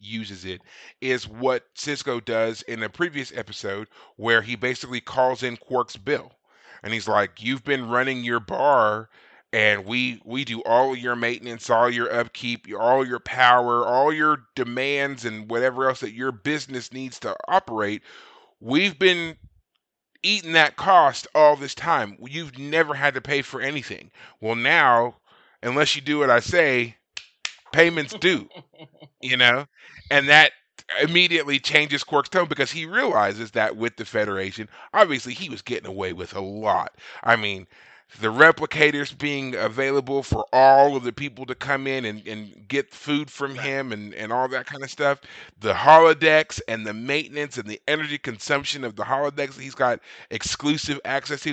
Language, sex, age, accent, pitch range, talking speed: English, male, 30-49, American, 115-145 Hz, 165 wpm